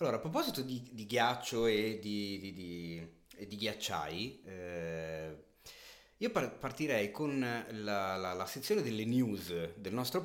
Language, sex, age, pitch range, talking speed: Italian, male, 30-49, 95-135 Hz, 145 wpm